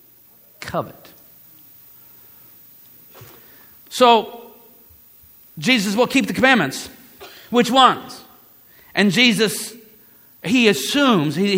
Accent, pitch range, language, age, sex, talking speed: American, 140-215 Hz, English, 50-69, male, 65 wpm